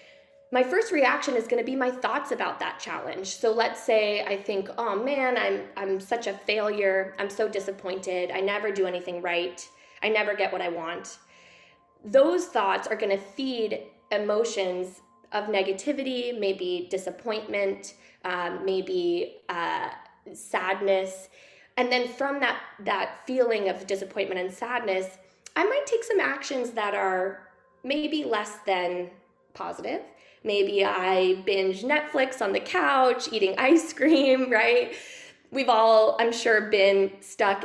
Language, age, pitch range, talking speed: English, 20-39, 190-250 Hz, 140 wpm